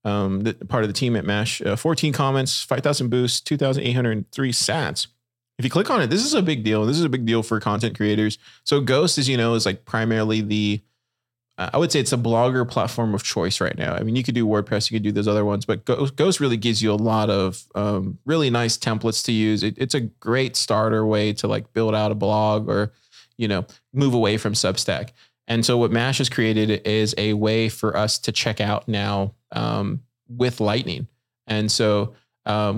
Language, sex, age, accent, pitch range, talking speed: English, male, 20-39, American, 110-140 Hz, 220 wpm